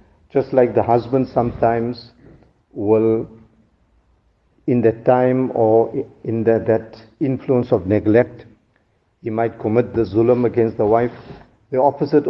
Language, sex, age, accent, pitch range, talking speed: English, male, 50-69, Indian, 110-125 Hz, 125 wpm